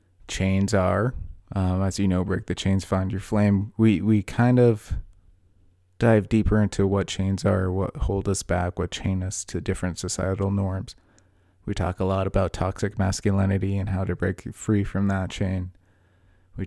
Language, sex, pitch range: English, male, 90-105 Hz